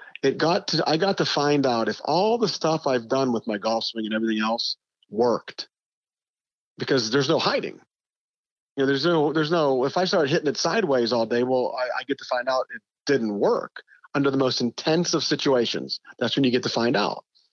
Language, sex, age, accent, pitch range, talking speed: English, male, 40-59, American, 115-145 Hz, 210 wpm